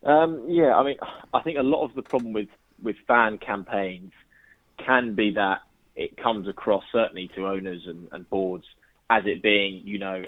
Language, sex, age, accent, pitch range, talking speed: English, male, 20-39, British, 95-105 Hz, 185 wpm